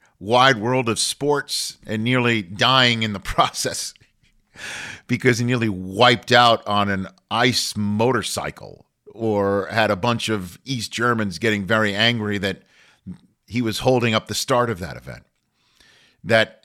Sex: male